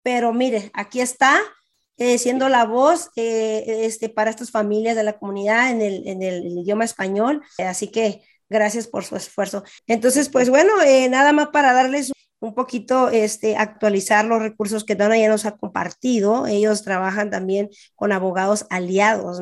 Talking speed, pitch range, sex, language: 165 wpm, 200-230 Hz, female, English